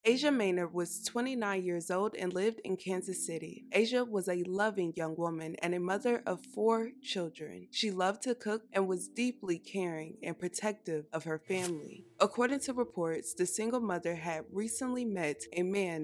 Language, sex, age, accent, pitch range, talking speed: English, female, 20-39, American, 170-225 Hz, 175 wpm